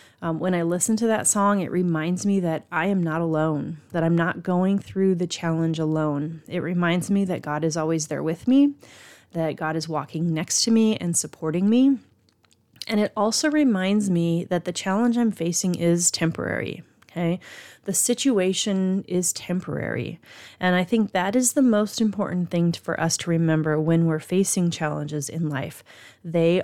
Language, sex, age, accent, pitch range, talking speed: English, female, 30-49, American, 165-200 Hz, 180 wpm